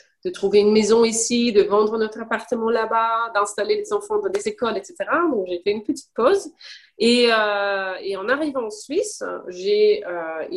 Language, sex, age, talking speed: French, female, 30-49, 180 wpm